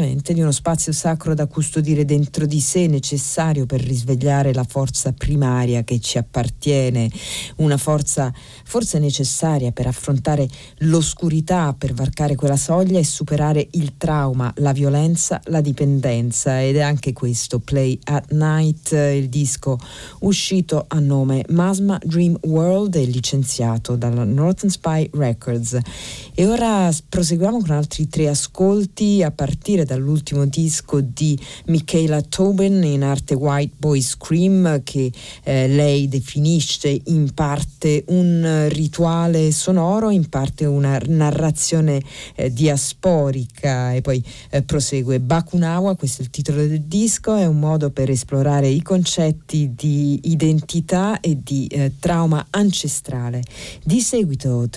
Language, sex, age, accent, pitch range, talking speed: Italian, female, 40-59, native, 135-165 Hz, 130 wpm